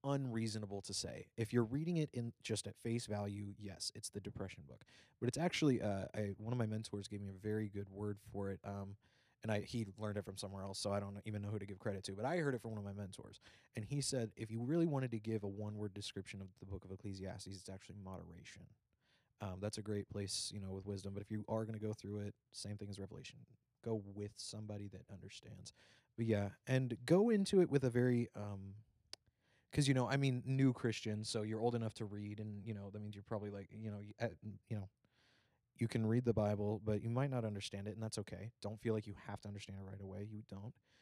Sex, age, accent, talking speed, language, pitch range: male, 20-39, American, 250 wpm, English, 100-120 Hz